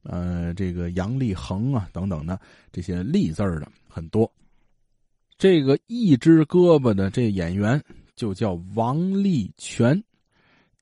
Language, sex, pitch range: Chinese, male, 90-120 Hz